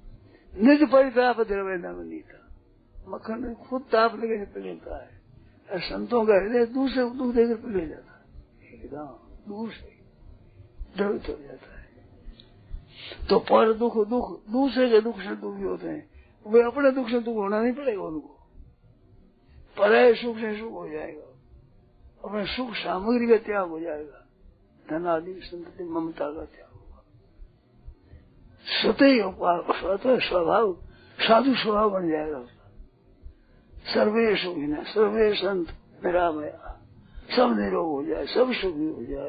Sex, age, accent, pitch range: male, 60-79, native, 175-245 Hz